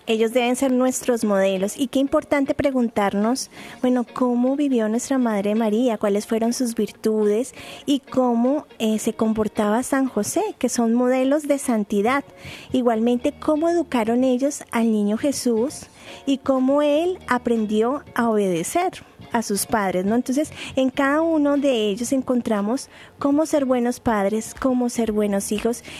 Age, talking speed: 20-39, 145 wpm